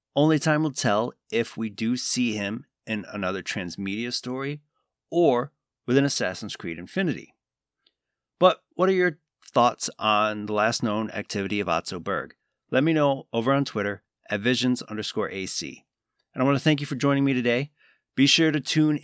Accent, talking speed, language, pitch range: American, 175 wpm, English, 110-140 Hz